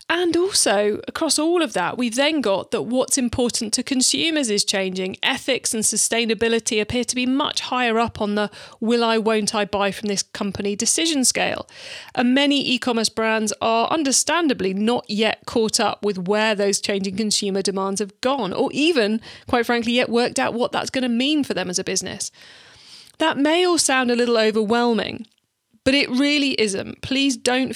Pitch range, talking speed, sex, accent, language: 205-255 Hz, 185 wpm, female, British, English